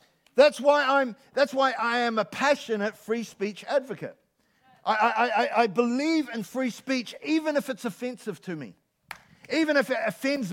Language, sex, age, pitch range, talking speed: English, male, 50-69, 210-255 Hz, 170 wpm